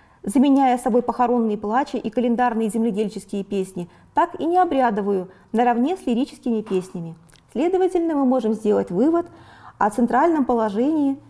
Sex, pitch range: female, 220-280 Hz